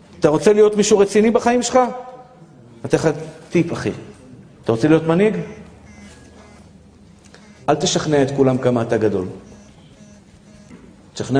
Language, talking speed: Hebrew, 125 wpm